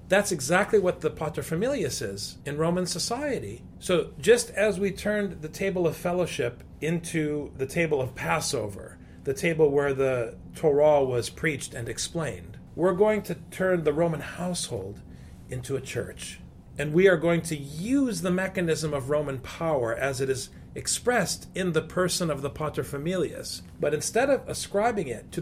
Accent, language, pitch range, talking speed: American, English, 130-185 Hz, 165 wpm